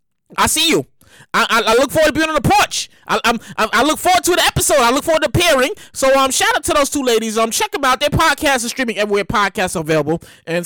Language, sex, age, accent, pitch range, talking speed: English, male, 20-39, American, 225-330 Hz, 270 wpm